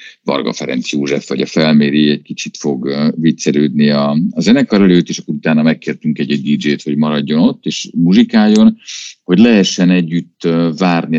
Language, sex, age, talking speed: Hungarian, male, 50-69, 150 wpm